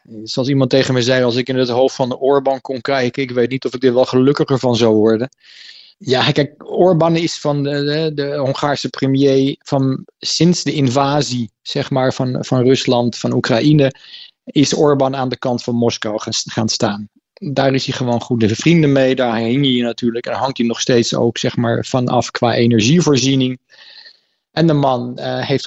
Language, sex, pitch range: Dutch, male, 120-140 Hz